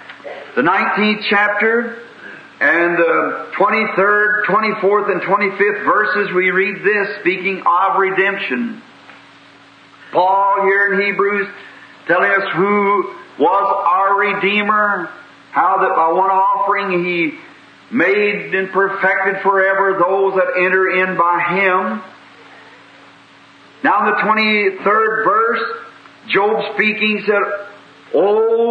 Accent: American